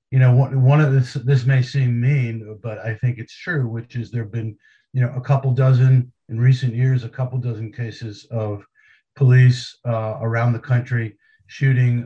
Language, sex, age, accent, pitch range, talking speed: English, male, 50-69, American, 115-130 Hz, 190 wpm